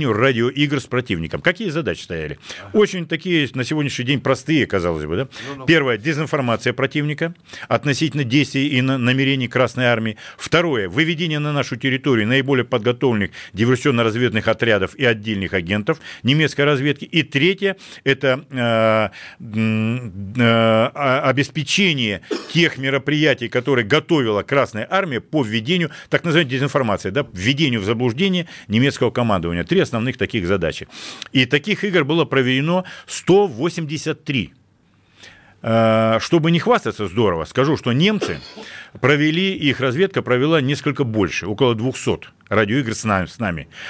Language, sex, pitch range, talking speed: Russian, male, 115-155 Hz, 120 wpm